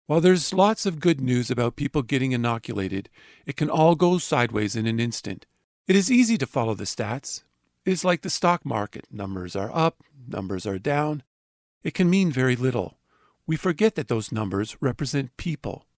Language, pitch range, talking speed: English, 120-170 Hz, 185 wpm